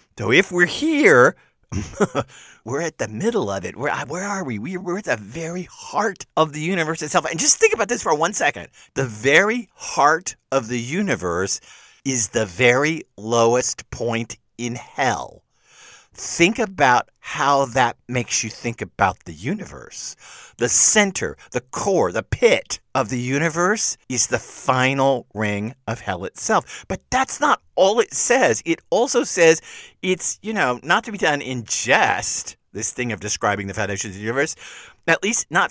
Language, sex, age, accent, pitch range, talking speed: English, male, 50-69, American, 120-190 Hz, 170 wpm